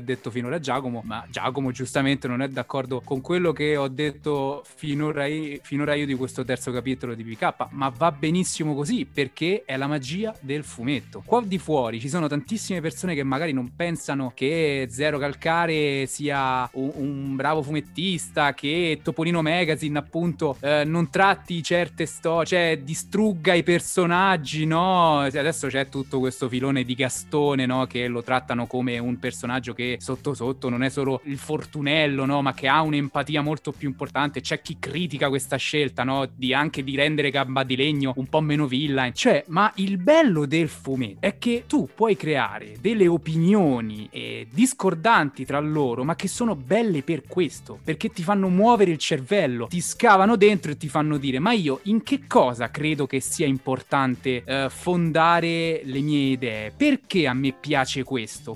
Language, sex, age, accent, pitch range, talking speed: Italian, male, 20-39, native, 130-165 Hz, 170 wpm